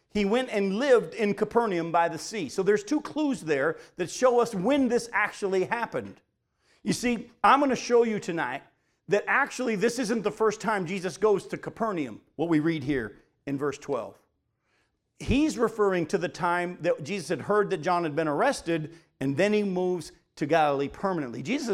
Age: 50-69